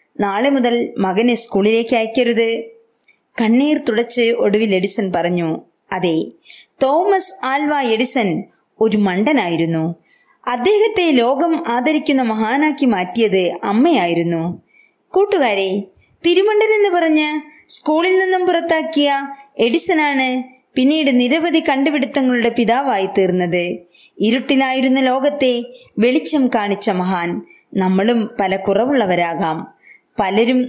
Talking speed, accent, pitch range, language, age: 85 wpm, native, 205-290 Hz, Malayalam, 20-39